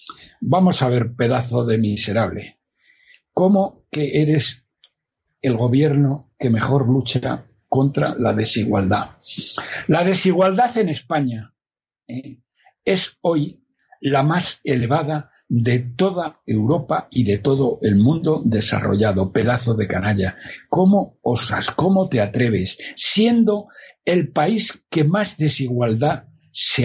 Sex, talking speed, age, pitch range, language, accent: male, 115 wpm, 60-79, 110-155 Hz, Spanish, Spanish